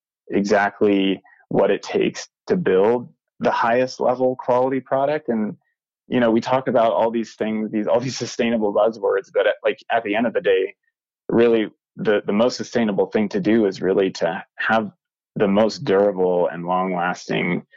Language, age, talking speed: English, 20-39, 170 wpm